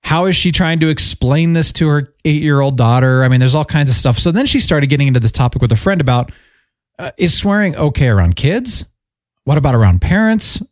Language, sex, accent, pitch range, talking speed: English, male, American, 115-155 Hz, 225 wpm